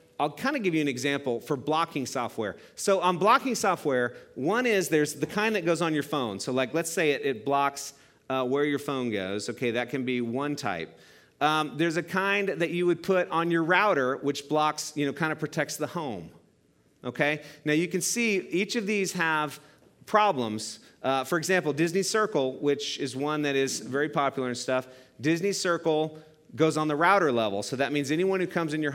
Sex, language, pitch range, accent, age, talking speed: male, English, 135-165 Hz, American, 40-59, 210 wpm